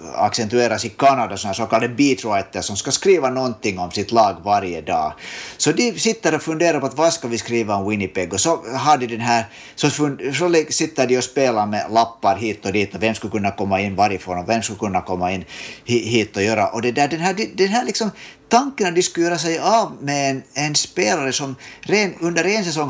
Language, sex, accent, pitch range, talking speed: Swedish, male, Finnish, 115-165 Hz, 225 wpm